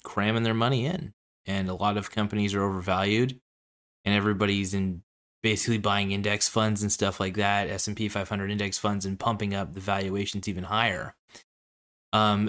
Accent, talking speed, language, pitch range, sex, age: American, 165 wpm, English, 95-110 Hz, male, 20-39